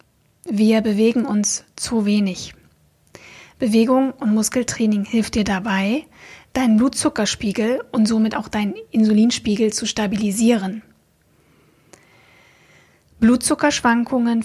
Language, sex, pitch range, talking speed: German, female, 215-250 Hz, 85 wpm